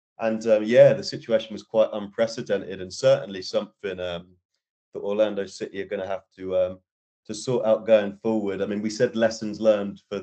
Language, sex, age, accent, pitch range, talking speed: English, male, 30-49, British, 95-110 Hz, 195 wpm